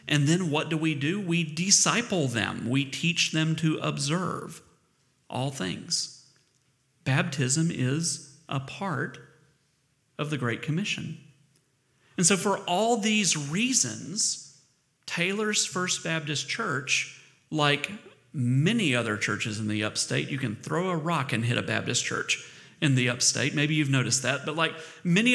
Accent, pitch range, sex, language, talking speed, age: American, 130-165 Hz, male, English, 145 wpm, 40-59